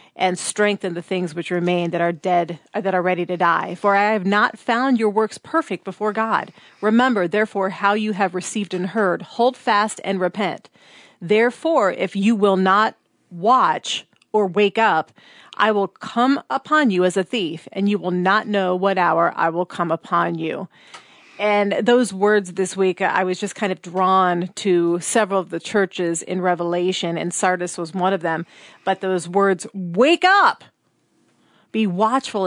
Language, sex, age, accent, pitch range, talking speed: English, female, 40-59, American, 180-215 Hz, 175 wpm